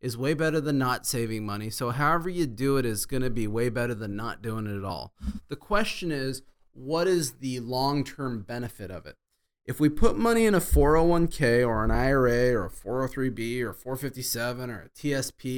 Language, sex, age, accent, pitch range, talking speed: English, male, 30-49, American, 115-145 Hz, 195 wpm